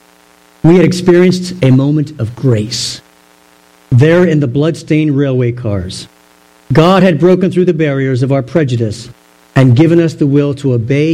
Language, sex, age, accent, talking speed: English, male, 50-69, American, 155 wpm